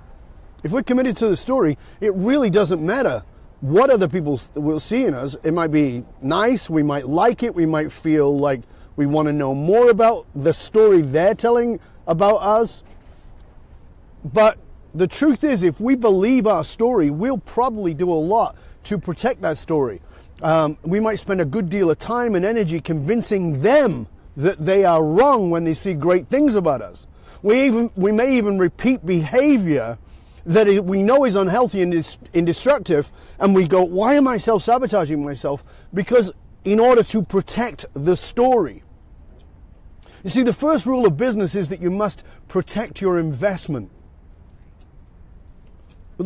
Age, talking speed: 40-59, 165 wpm